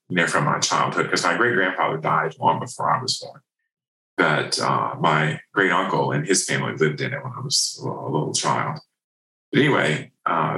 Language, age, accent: English, 40-59, American